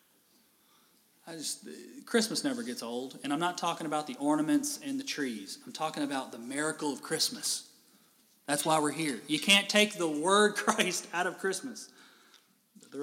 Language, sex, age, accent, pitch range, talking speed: English, male, 30-49, American, 165-260 Hz, 160 wpm